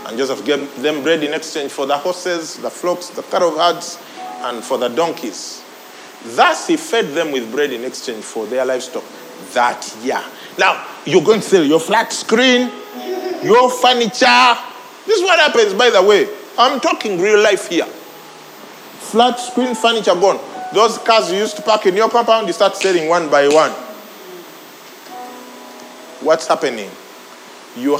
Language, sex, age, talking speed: English, male, 40-59, 165 wpm